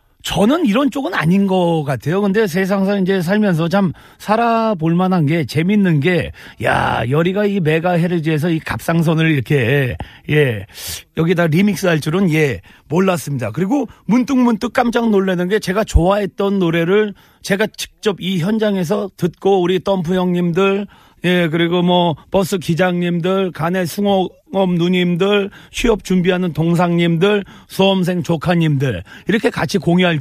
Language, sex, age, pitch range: Korean, male, 40-59, 160-210 Hz